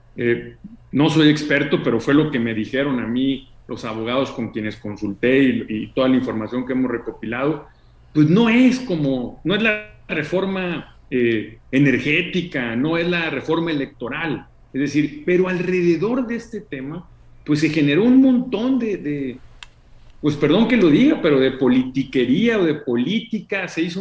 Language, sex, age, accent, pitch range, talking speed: Spanish, male, 40-59, Mexican, 125-170 Hz, 165 wpm